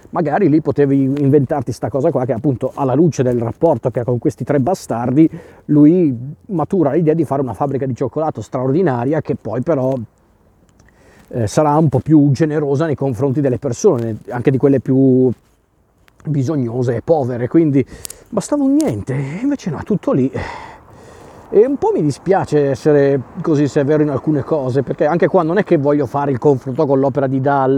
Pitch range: 130-150 Hz